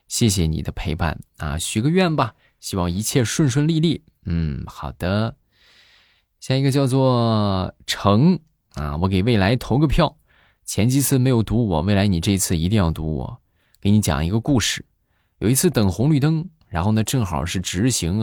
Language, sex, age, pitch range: Chinese, male, 20-39, 85-130 Hz